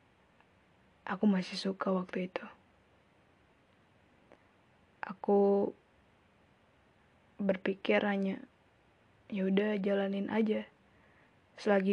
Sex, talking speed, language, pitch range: female, 60 wpm, Indonesian, 195-210 Hz